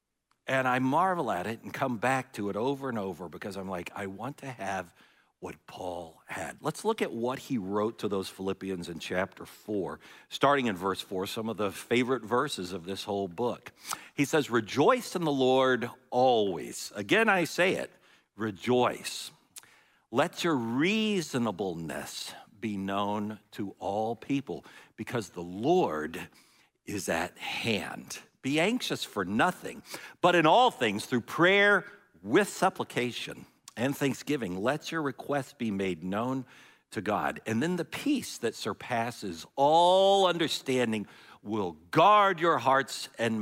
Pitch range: 105-165 Hz